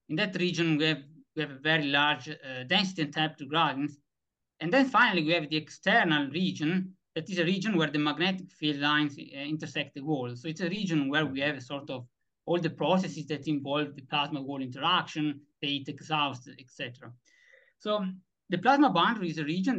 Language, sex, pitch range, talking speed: English, male, 145-175 Hz, 195 wpm